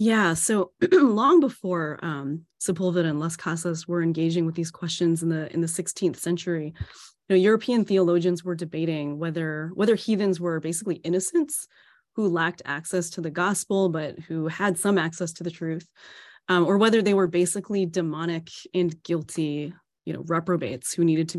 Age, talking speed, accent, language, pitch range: 20-39, 170 wpm, American, English, 165-190 Hz